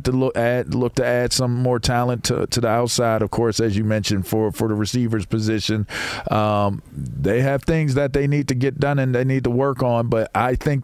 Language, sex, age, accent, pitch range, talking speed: English, male, 40-59, American, 105-130 Hz, 225 wpm